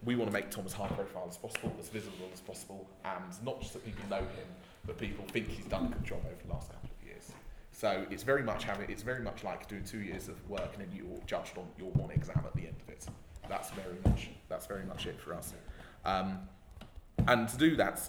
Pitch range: 90-100 Hz